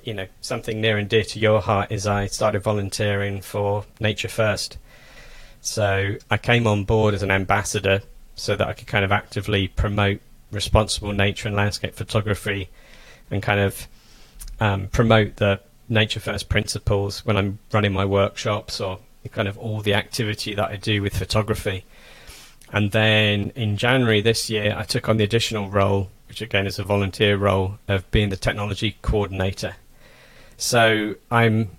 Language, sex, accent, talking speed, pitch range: English, male, British, 165 wpm, 100-110 Hz